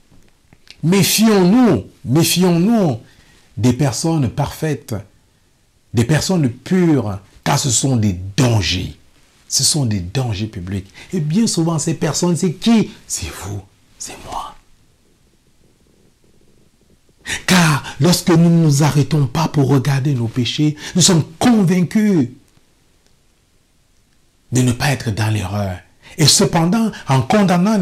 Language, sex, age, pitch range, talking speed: French, male, 60-79, 100-155 Hz, 115 wpm